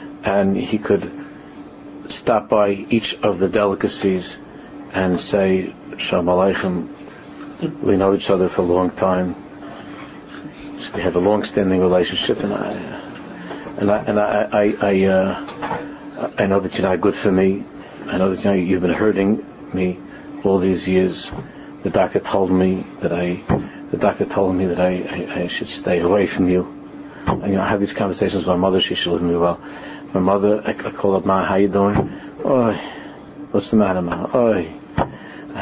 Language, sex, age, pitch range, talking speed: English, male, 50-69, 90-105 Hz, 180 wpm